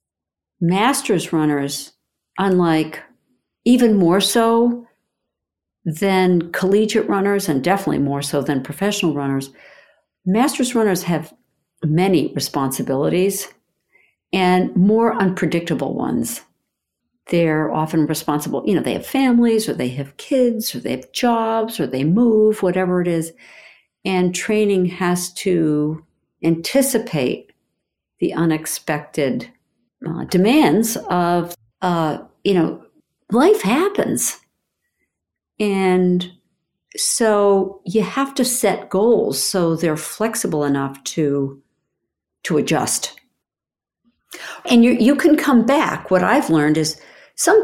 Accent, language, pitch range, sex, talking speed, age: American, English, 160-230 Hz, female, 110 wpm, 60-79